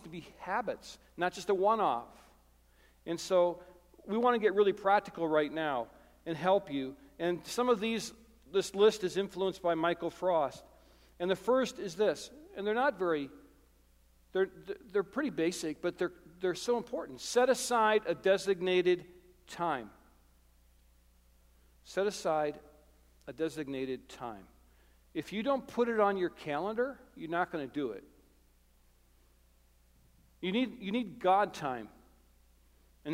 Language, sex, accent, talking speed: English, male, American, 145 wpm